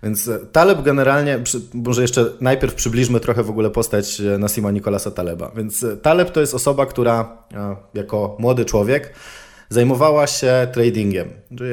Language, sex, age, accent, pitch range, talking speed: Polish, male, 20-39, native, 105-130 Hz, 140 wpm